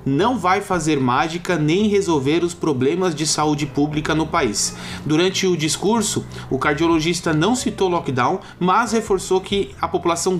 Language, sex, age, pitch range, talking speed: Portuguese, male, 20-39, 155-195 Hz, 150 wpm